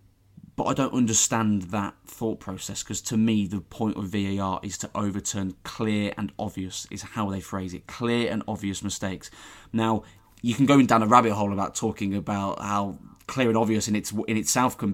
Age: 20-39